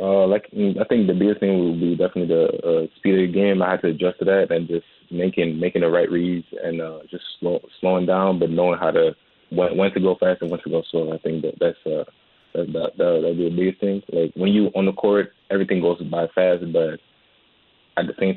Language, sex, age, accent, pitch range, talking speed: English, male, 20-39, American, 85-95 Hz, 250 wpm